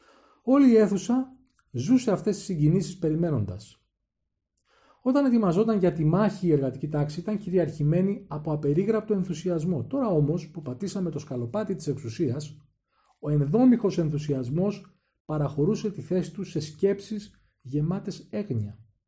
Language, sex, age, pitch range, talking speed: Greek, male, 40-59, 130-195 Hz, 125 wpm